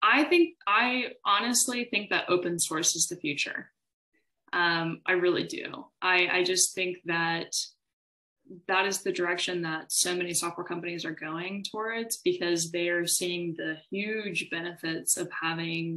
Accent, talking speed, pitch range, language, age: American, 155 wpm, 165-200 Hz, English, 20-39